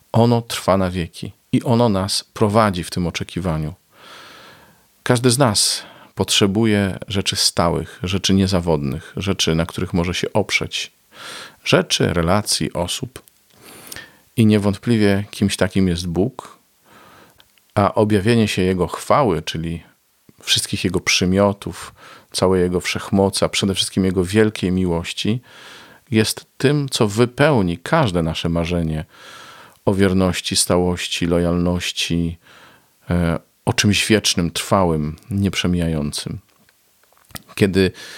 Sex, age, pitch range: male, 40-59, 85-110 Hz